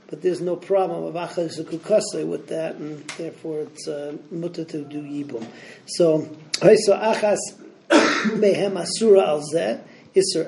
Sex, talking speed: male, 130 wpm